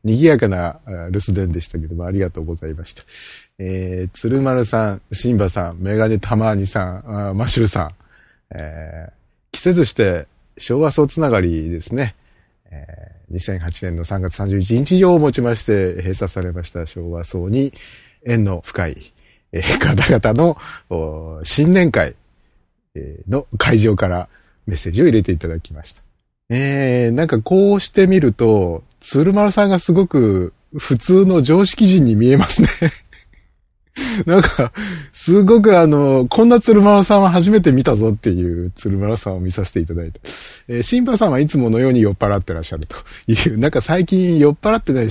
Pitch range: 90-140 Hz